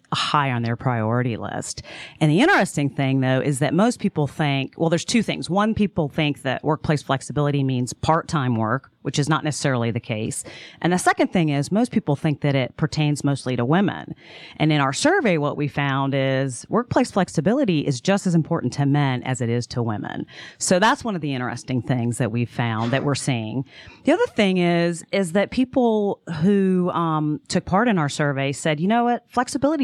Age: 40-59